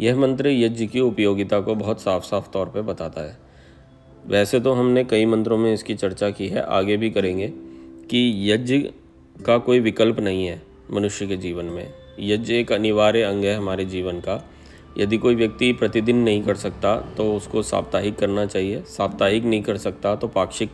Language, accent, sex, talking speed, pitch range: Hindi, native, male, 180 wpm, 95-115 Hz